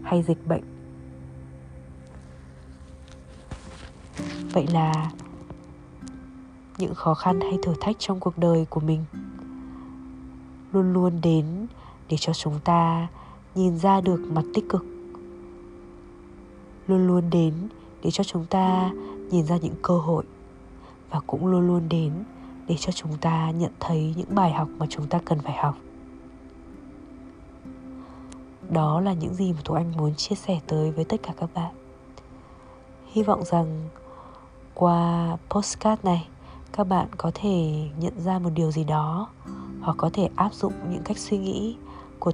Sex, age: female, 20-39